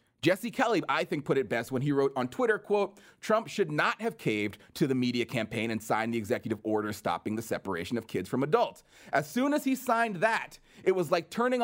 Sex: male